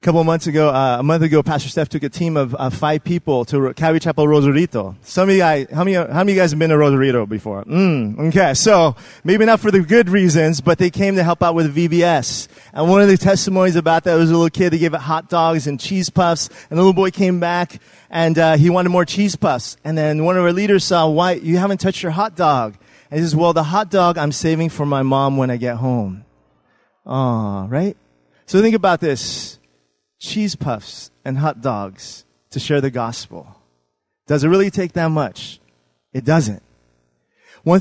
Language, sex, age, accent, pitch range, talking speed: English, male, 30-49, American, 145-180 Hz, 220 wpm